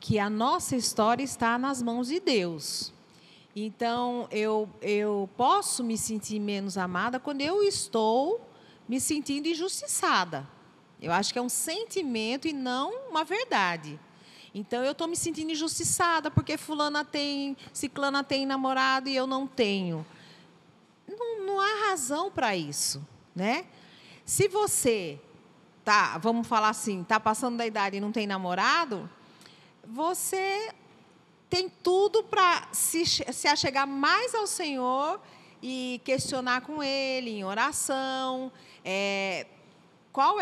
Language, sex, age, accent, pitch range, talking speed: Portuguese, female, 40-59, Brazilian, 210-325 Hz, 130 wpm